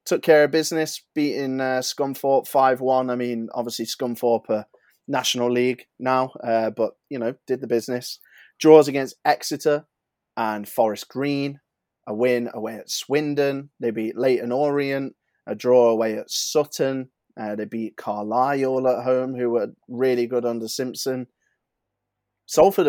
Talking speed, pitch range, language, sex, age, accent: 145 wpm, 115-140 Hz, English, male, 20-39, British